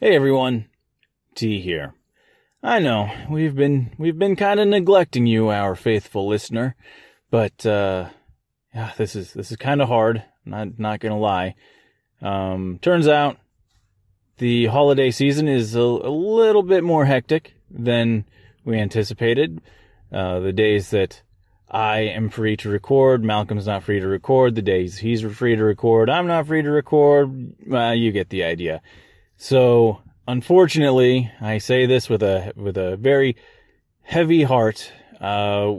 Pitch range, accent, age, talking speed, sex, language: 105-130 Hz, American, 30-49, 155 wpm, male, English